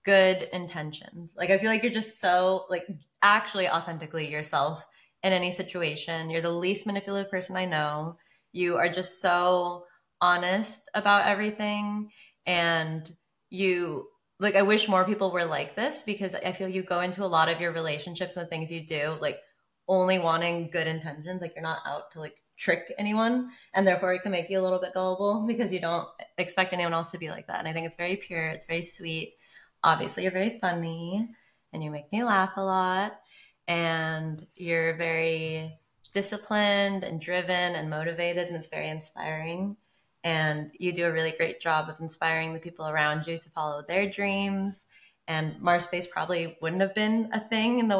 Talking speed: 185 wpm